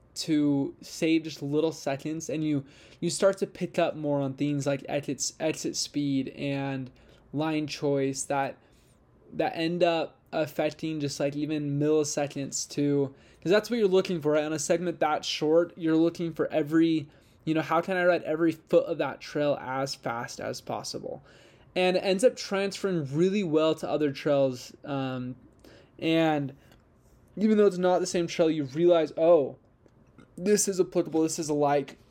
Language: English